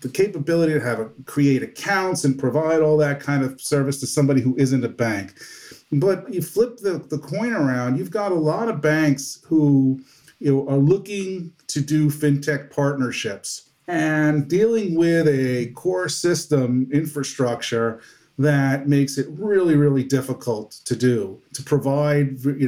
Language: English